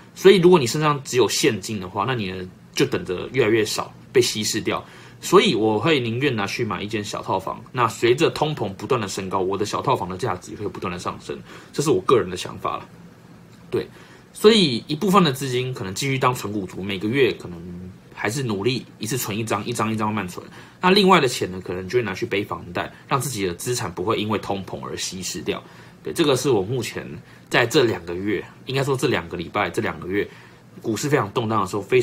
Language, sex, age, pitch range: Chinese, male, 20-39, 100-135 Hz